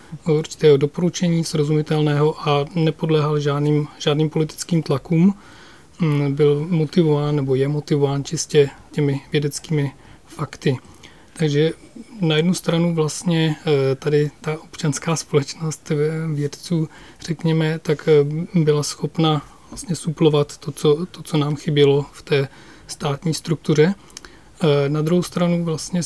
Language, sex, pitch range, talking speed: Czech, male, 145-160 Hz, 110 wpm